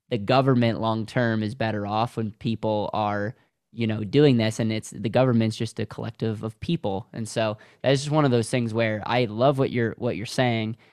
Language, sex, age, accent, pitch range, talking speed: English, male, 10-29, American, 110-135 Hz, 220 wpm